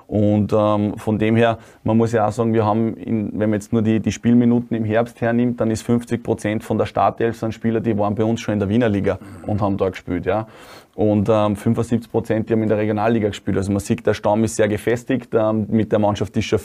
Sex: male